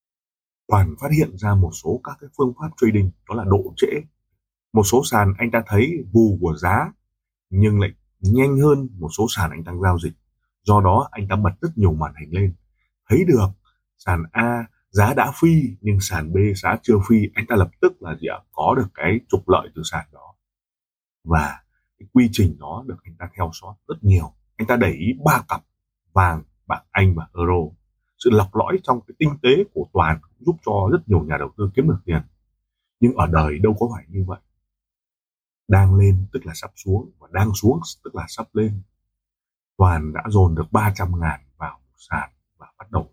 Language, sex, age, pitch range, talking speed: Vietnamese, male, 20-39, 90-115 Hz, 205 wpm